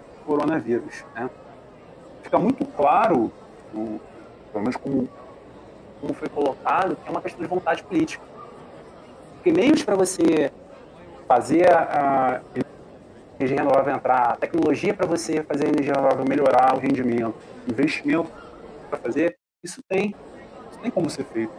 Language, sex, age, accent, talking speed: Portuguese, male, 40-59, Brazilian, 135 wpm